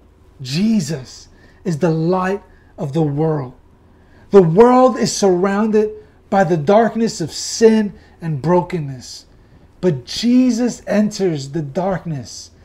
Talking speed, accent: 110 wpm, American